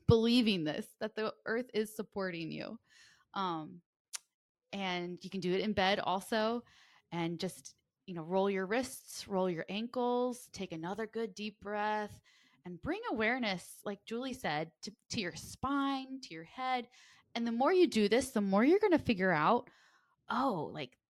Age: 20-39